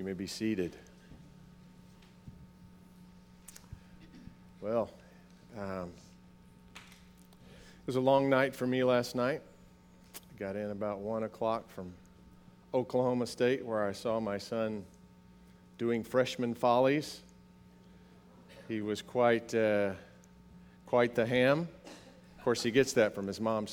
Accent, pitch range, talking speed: American, 90-130 Hz, 115 wpm